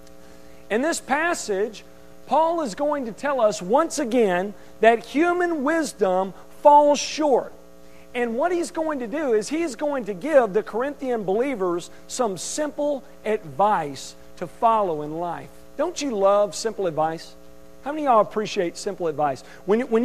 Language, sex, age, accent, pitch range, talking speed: English, male, 40-59, American, 165-270 Hz, 155 wpm